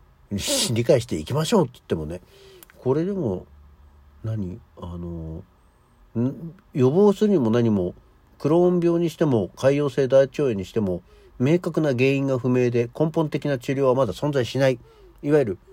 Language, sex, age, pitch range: Japanese, male, 50-69, 95-150 Hz